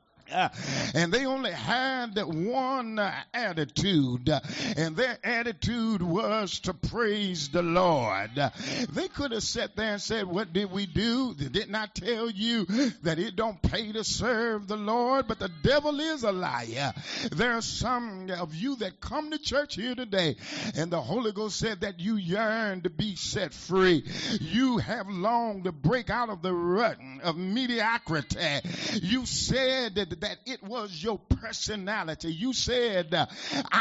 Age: 50-69